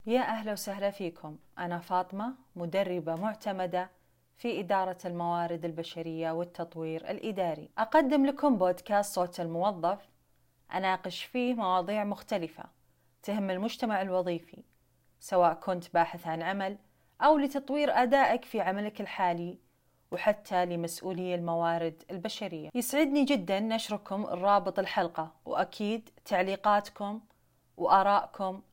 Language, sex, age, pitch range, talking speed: Arabic, female, 30-49, 180-220 Hz, 100 wpm